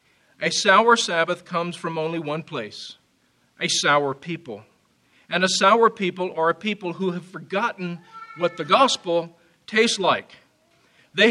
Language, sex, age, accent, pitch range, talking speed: English, male, 50-69, American, 165-205 Hz, 145 wpm